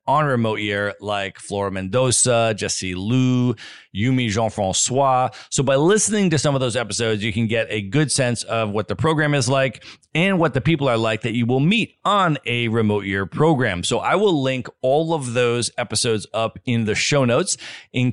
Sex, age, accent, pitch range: male, 40-59, American, 110-140 Hz